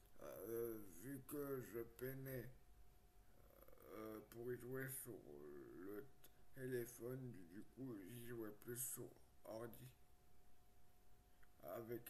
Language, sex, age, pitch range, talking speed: French, male, 60-79, 115-130 Hz, 100 wpm